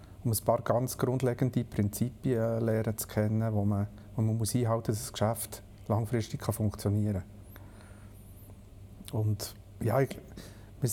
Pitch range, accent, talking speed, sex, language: 100-120 Hz, Austrian, 145 wpm, male, German